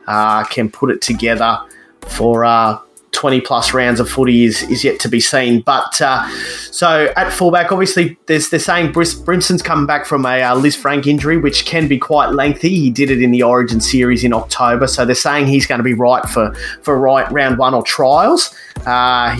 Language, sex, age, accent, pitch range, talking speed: English, male, 30-49, Australian, 120-150 Hz, 205 wpm